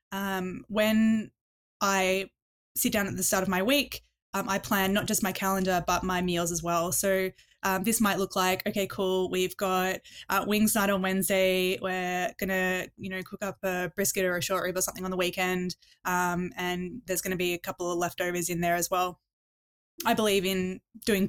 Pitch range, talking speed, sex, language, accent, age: 185-205 Hz, 205 wpm, female, English, Australian, 10-29